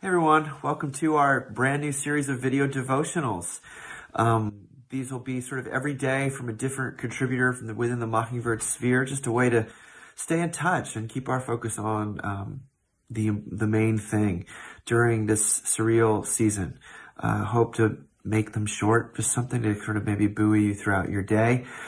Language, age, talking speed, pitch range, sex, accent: English, 30-49, 185 wpm, 105-130 Hz, male, American